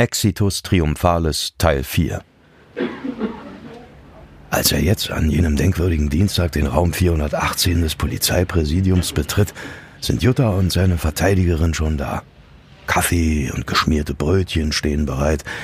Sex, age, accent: male, 60-79, German